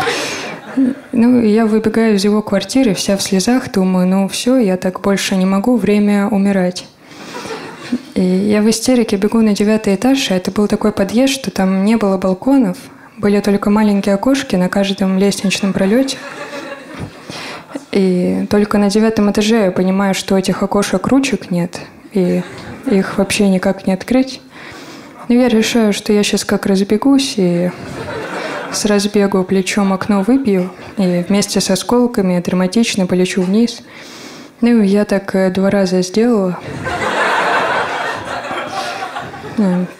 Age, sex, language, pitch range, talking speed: 20-39, female, Russian, 190-225 Hz, 135 wpm